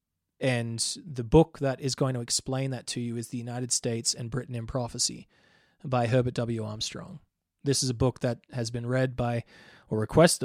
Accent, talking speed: Australian, 195 wpm